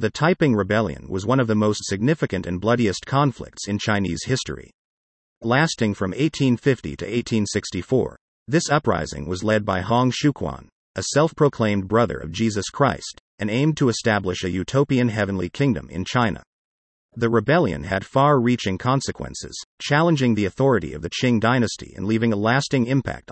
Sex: male